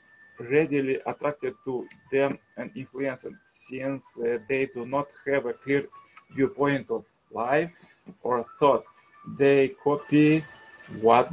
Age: 20-39